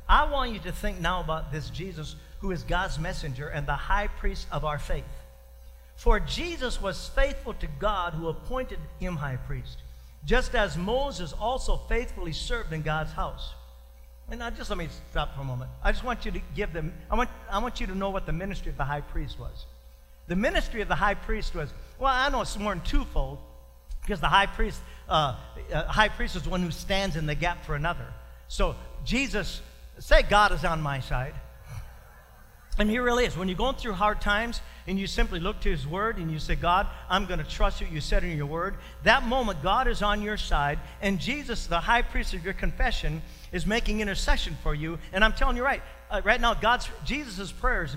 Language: English